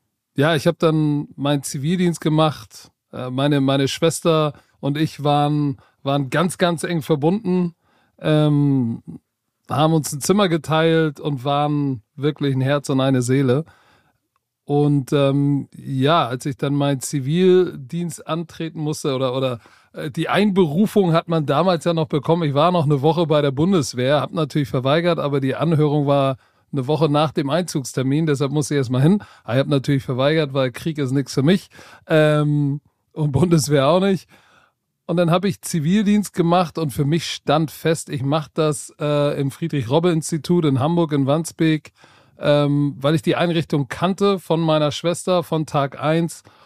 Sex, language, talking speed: male, German, 160 wpm